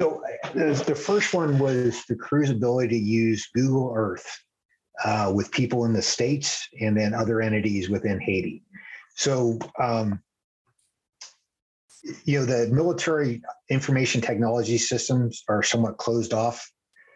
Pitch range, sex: 105-125 Hz, male